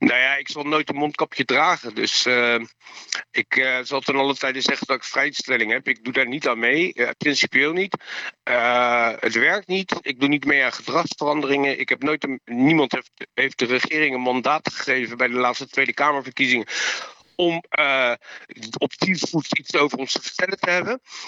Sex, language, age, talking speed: male, Dutch, 50-69, 195 wpm